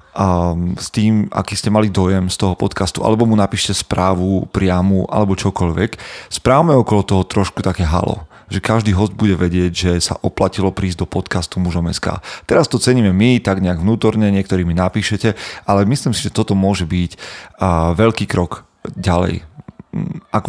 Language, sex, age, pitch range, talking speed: Slovak, male, 30-49, 95-110 Hz, 160 wpm